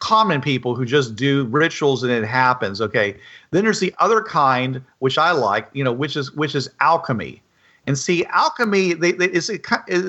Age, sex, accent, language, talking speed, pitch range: 50-69, male, American, English, 180 wpm, 130-185 Hz